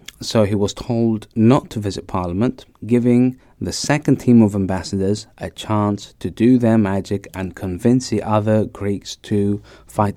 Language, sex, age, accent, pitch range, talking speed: English, male, 30-49, British, 100-120 Hz, 160 wpm